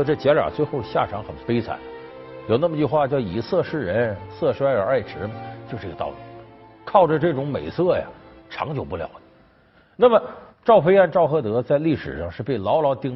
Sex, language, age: male, Chinese, 50-69